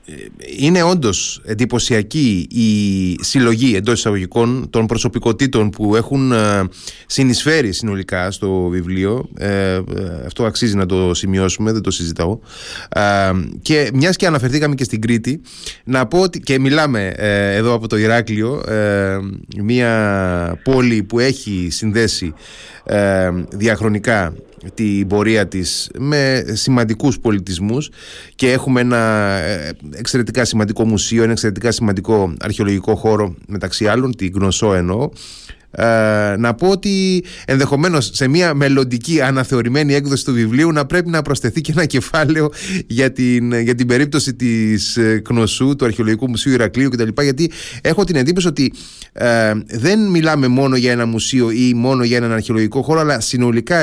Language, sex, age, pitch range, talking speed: Greek, male, 20-39, 105-135 Hz, 135 wpm